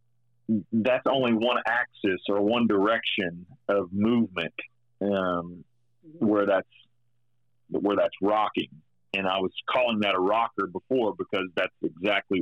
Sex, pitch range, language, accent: male, 95-120 Hz, English, American